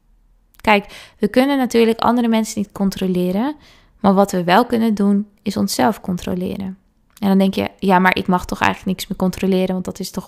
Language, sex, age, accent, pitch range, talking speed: Dutch, female, 20-39, Dutch, 185-210 Hz, 200 wpm